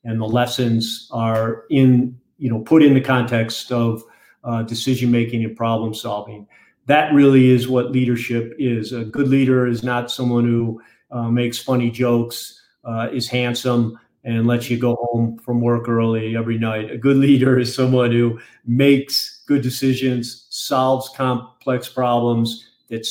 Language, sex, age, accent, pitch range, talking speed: English, male, 40-59, American, 115-130 Hz, 160 wpm